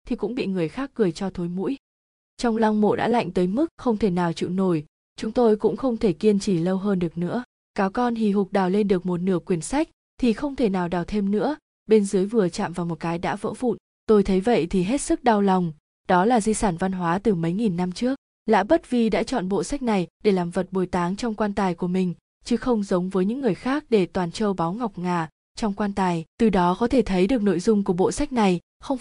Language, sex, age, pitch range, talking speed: Vietnamese, female, 20-39, 185-230 Hz, 260 wpm